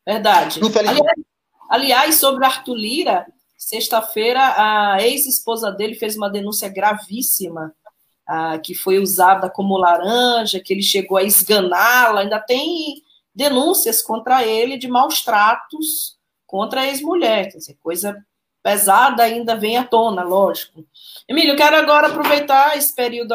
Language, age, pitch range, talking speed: Portuguese, 20-39, 200-250 Hz, 130 wpm